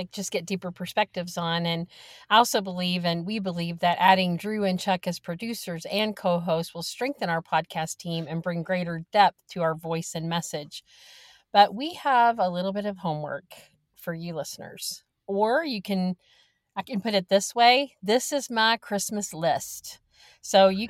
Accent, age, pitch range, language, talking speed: American, 40-59, 175-215 Hz, English, 180 wpm